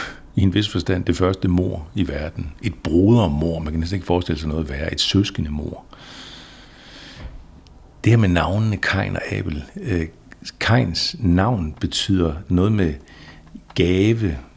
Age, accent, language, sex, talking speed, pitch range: 60-79, native, Danish, male, 150 wpm, 80-105 Hz